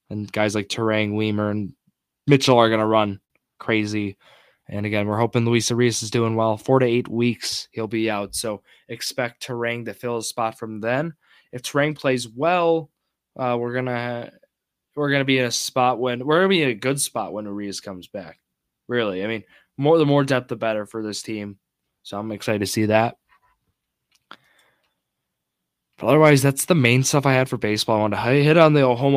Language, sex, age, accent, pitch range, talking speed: English, male, 10-29, American, 105-130 Hz, 210 wpm